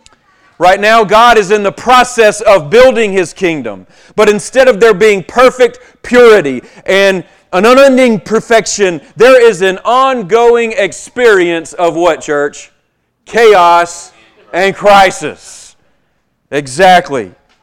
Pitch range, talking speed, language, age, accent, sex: 160-235 Hz, 115 wpm, English, 40-59, American, male